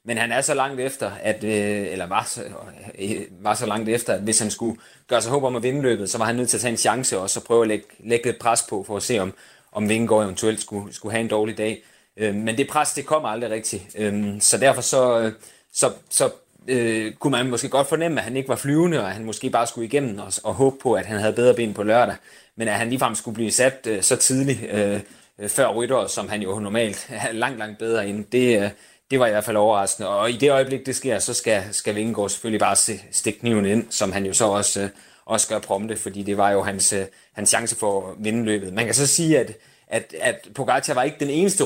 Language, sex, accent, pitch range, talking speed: Danish, male, native, 105-125 Hz, 245 wpm